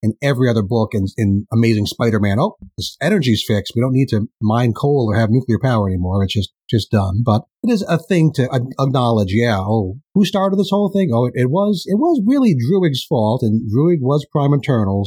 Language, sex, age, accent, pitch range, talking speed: English, male, 30-49, American, 105-150 Hz, 225 wpm